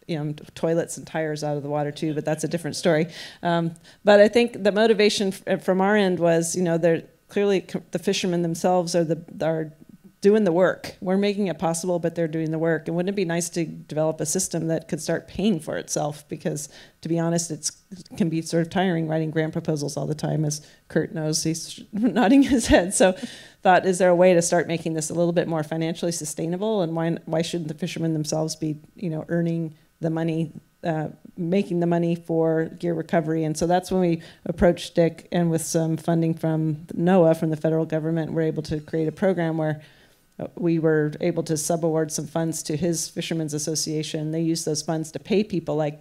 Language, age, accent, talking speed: English, 40-59, American, 220 wpm